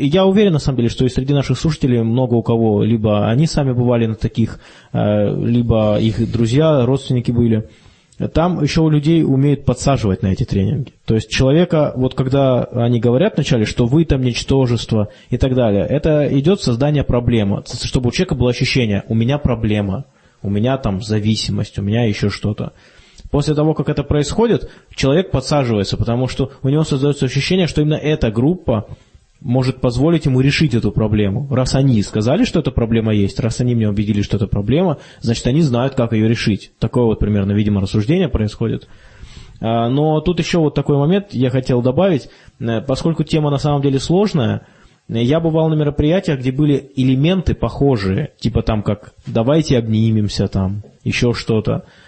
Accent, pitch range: native, 110-145 Hz